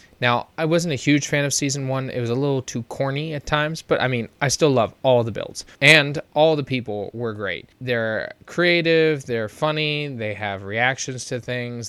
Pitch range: 115-140 Hz